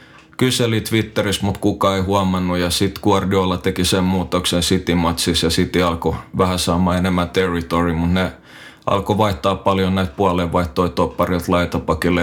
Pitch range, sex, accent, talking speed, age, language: 90-100 Hz, male, native, 145 wpm, 20-39, Finnish